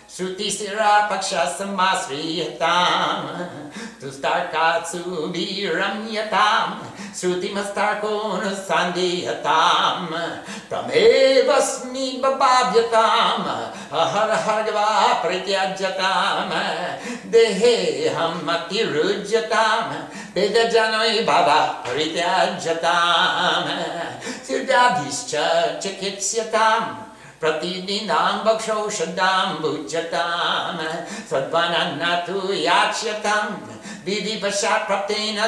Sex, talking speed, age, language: male, 55 wpm, 60-79, English